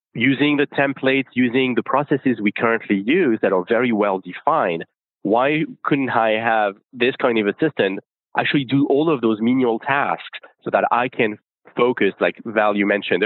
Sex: male